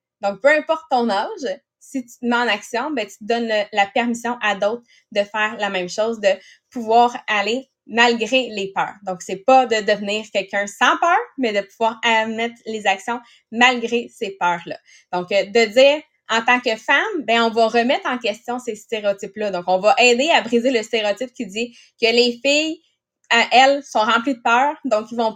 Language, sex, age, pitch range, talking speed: English, female, 20-39, 210-255 Hz, 200 wpm